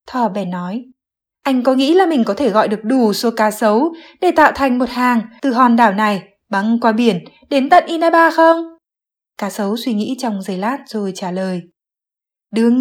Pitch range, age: 210-275 Hz, 20-39